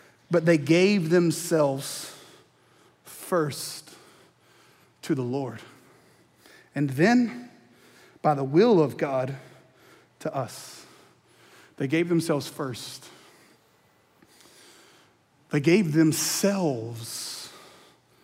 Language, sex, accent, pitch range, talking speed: English, male, American, 155-235 Hz, 80 wpm